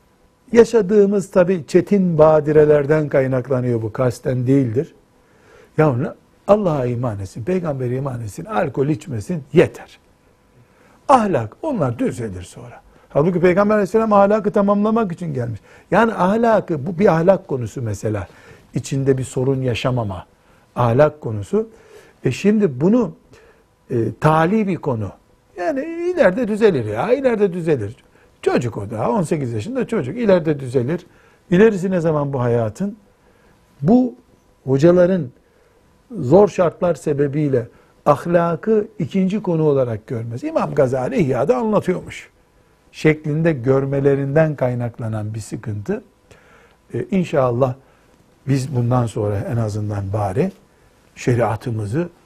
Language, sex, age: Turkish, male, 60-79